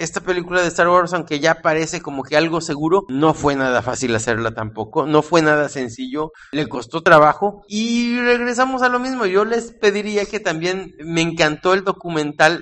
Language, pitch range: English, 135-180 Hz